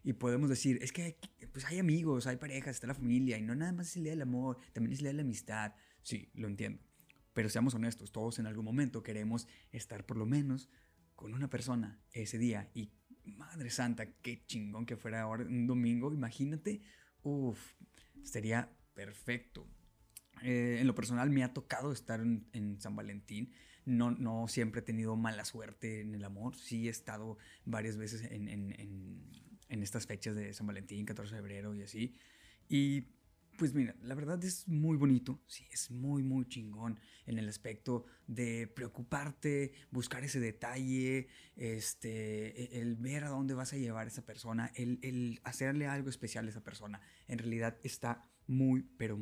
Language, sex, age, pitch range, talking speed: Spanish, male, 20-39, 110-130 Hz, 180 wpm